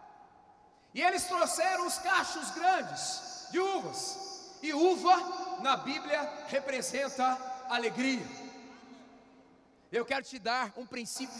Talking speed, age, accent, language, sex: 105 wpm, 40-59, Brazilian, Portuguese, male